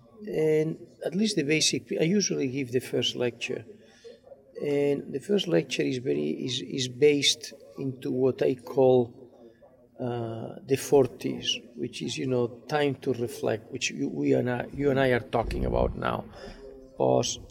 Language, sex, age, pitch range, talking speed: English, male, 50-69, 120-135 Hz, 160 wpm